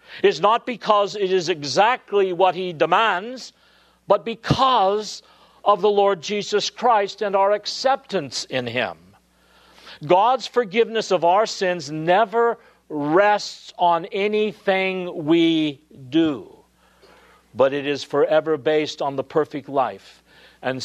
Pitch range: 125-195 Hz